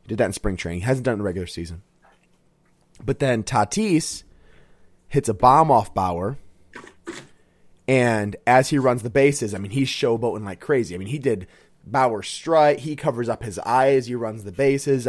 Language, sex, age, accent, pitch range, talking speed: English, male, 30-49, American, 105-150 Hz, 195 wpm